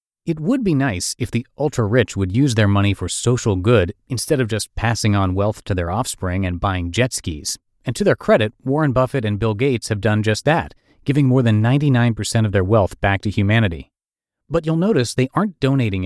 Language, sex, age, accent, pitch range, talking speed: English, male, 30-49, American, 95-130 Hz, 210 wpm